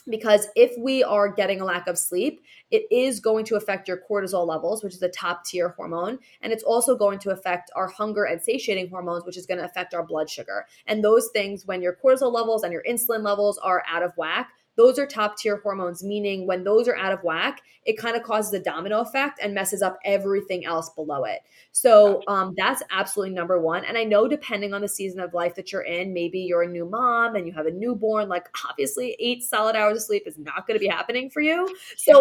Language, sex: English, female